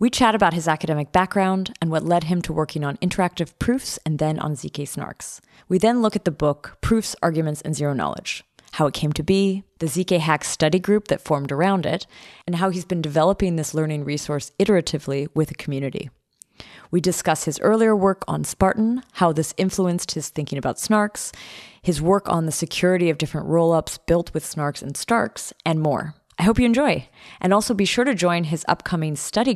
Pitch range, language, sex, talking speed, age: 150-195 Hz, English, female, 200 wpm, 30-49